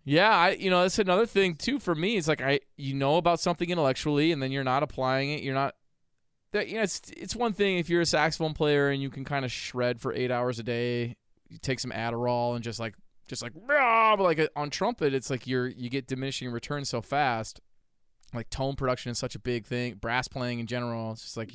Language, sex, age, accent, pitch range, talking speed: English, male, 20-39, American, 115-140 Hz, 240 wpm